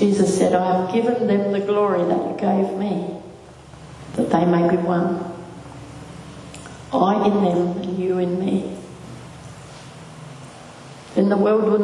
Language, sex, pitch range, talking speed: English, female, 175-190 Hz, 140 wpm